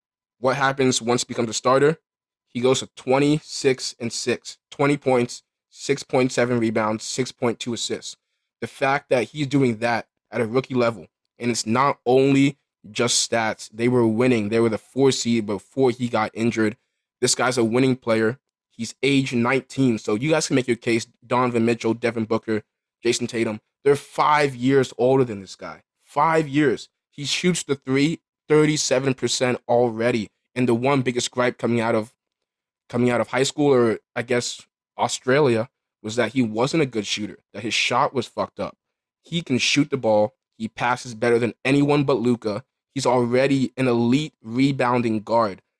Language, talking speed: English, 175 wpm